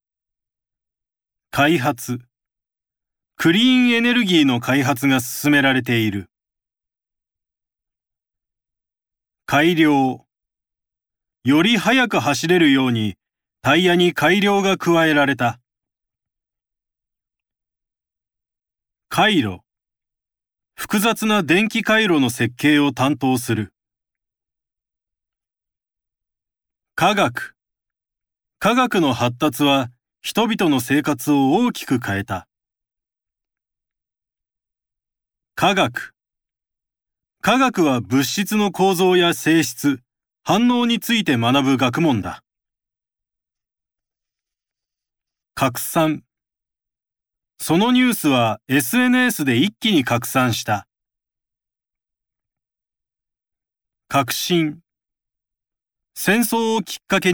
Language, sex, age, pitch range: Japanese, male, 40-59, 115-175 Hz